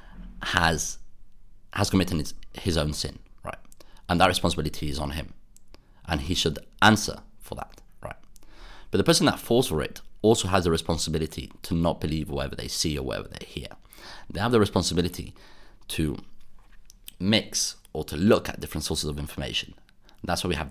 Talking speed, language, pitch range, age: 175 wpm, English, 80-100 Hz, 30-49